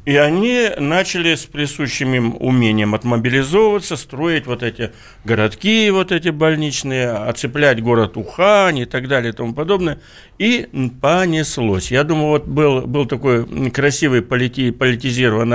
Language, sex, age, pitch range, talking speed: Russian, male, 60-79, 110-155 Hz, 125 wpm